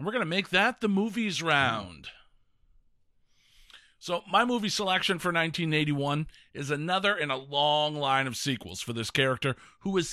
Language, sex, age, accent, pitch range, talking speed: English, male, 40-59, American, 130-185 Hz, 160 wpm